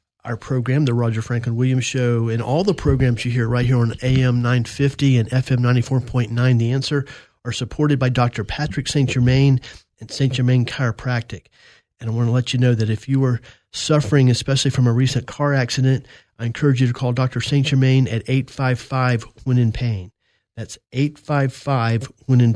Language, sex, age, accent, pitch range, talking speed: English, male, 40-59, American, 120-140 Hz, 185 wpm